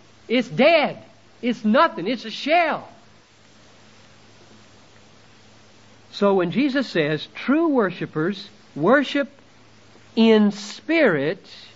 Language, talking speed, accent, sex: English, 80 wpm, American, male